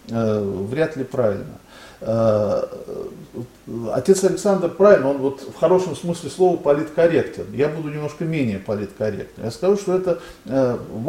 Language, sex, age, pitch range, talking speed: Russian, male, 40-59, 125-185 Hz, 125 wpm